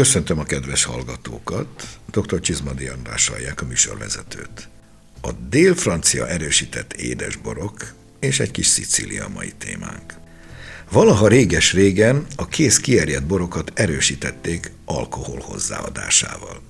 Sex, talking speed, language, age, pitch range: male, 105 wpm, Hungarian, 60-79, 75-105 Hz